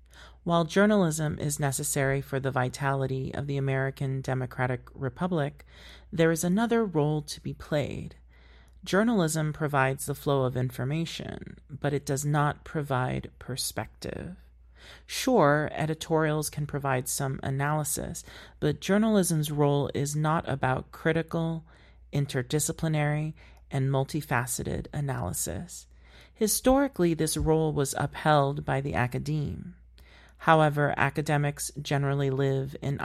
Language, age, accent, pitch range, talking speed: English, 40-59, American, 130-155 Hz, 110 wpm